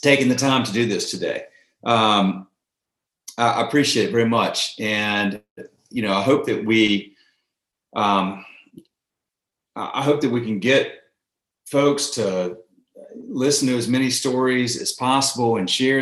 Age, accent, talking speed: 40-59, American, 140 wpm